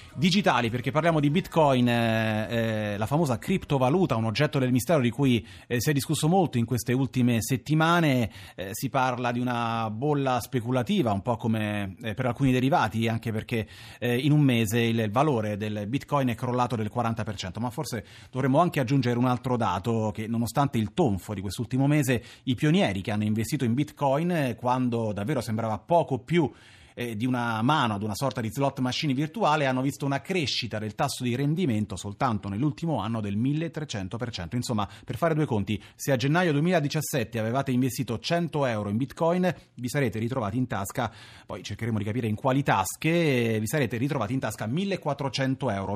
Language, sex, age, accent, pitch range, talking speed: Italian, male, 30-49, native, 110-140 Hz, 180 wpm